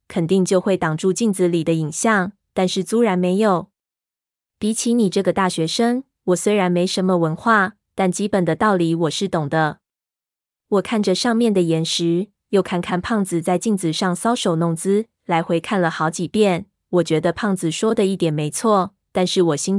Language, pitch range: Chinese, 170-210 Hz